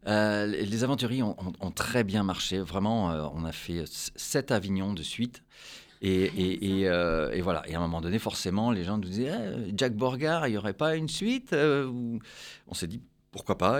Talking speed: 220 wpm